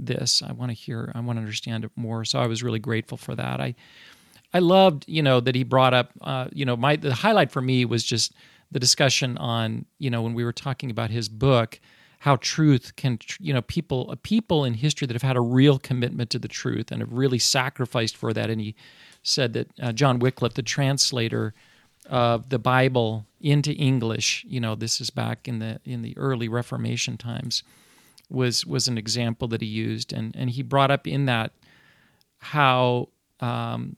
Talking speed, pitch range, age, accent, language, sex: 205 wpm, 115-140 Hz, 40-59, American, English, male